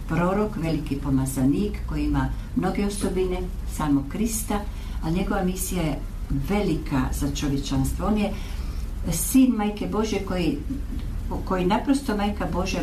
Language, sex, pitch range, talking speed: Croatian, female, 145-190 Hz, 120 wpm